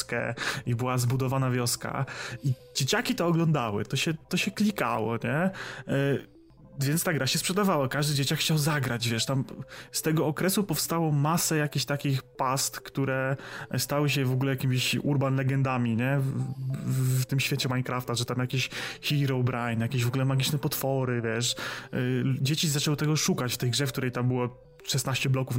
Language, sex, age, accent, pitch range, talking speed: Polish, male, 20-39, native, 125-150 Hz, 175 wpm